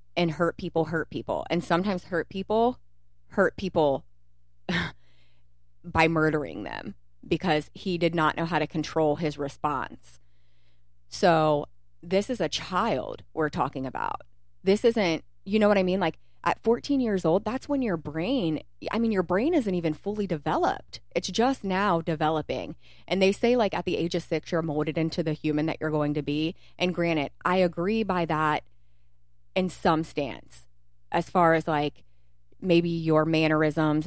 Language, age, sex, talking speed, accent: English, 30-49, female, 165 wpm, American